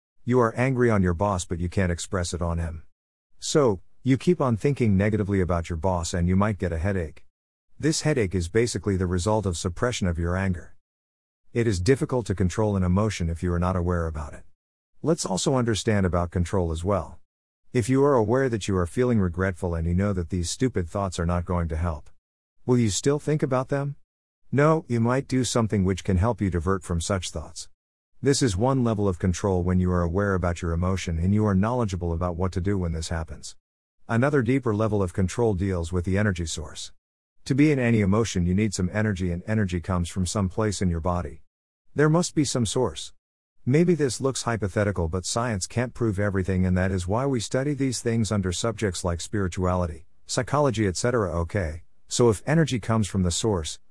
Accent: American